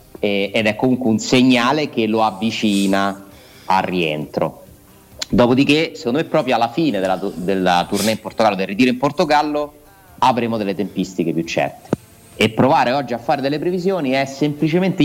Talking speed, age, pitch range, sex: 155 wpm, 30-49, 95-135 Hz, male